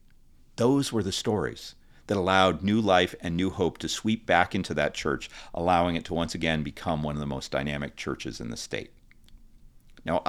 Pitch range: 95-125 Hz